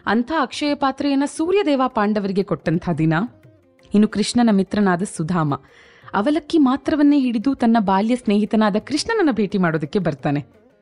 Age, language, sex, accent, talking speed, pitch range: 20-39, Kannada, female, native, 115 wpm, 190-280 Hz